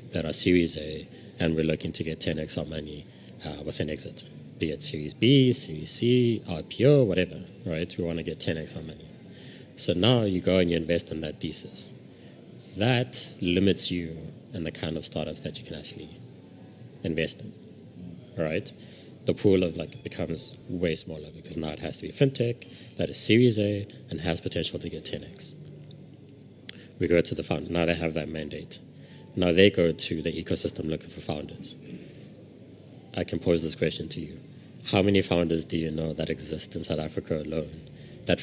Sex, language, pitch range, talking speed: male, English, 80-95 Hz, 185 wpm